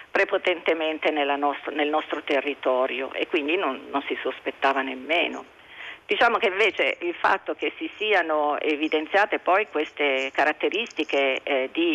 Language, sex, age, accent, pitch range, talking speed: Italian, female, 50-69, native, 145-210 Hz, 125 wpm